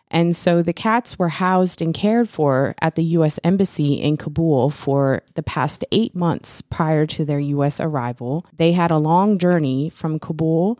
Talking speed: 180 wpm